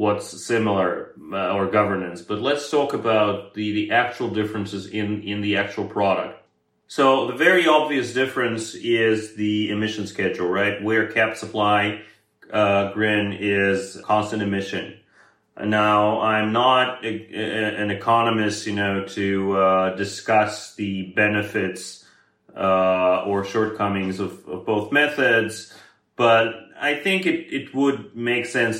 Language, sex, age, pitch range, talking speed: English, male, 30-49, 100-120 Hz, 130 wpm